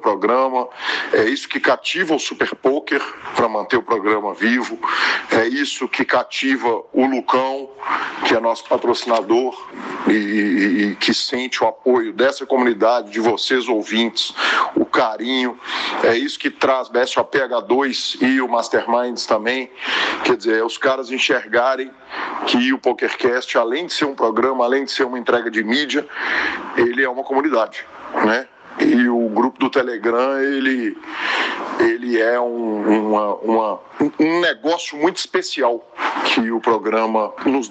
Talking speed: 150 wpm